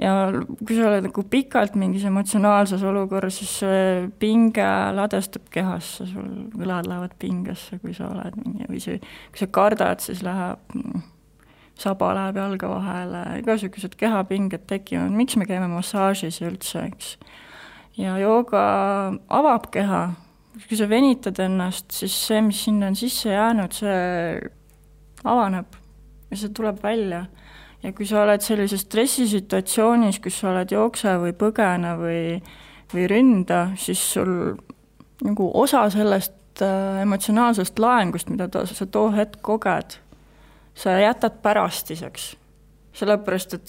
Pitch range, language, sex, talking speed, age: 185-220 Hz, English, female, 135 wpm, 20-39